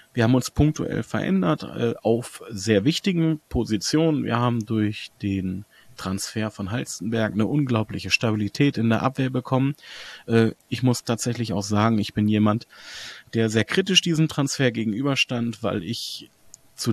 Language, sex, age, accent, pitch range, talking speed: German, male, 30-49, German, 110-135 Hz, 150 wpm